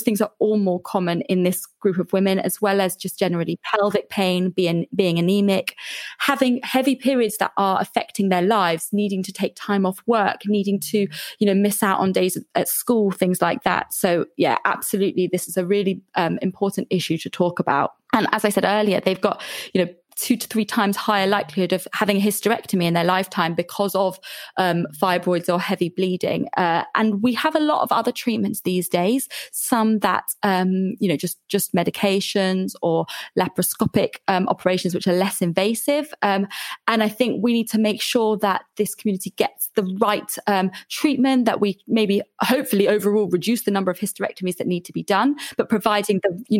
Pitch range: 185-215 Hz